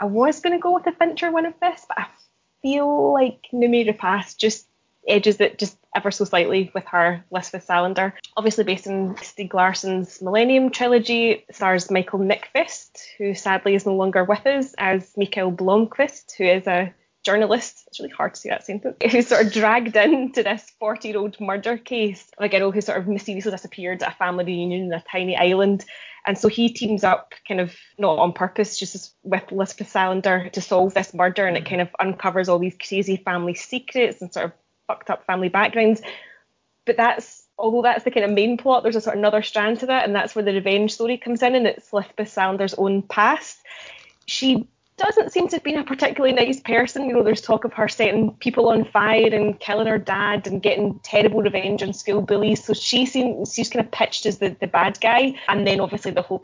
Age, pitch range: 10-29, 190-225 Hz